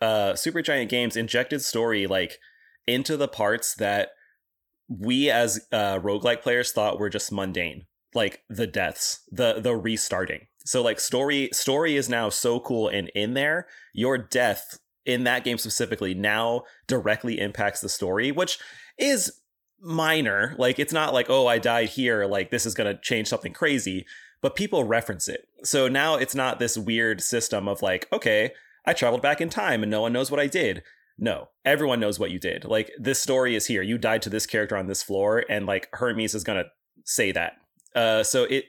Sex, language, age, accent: male, English, 30-49, American